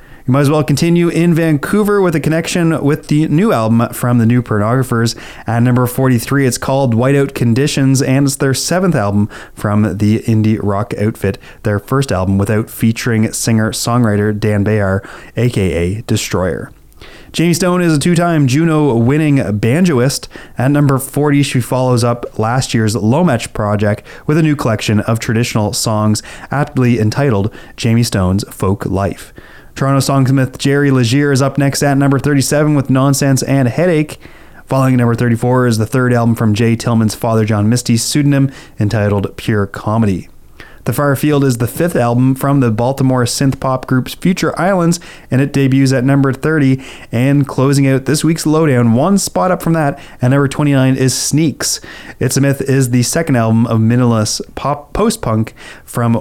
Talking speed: 165 wpm